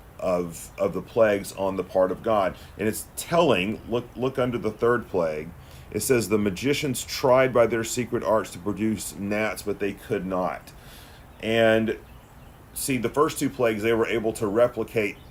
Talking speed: 175 wpm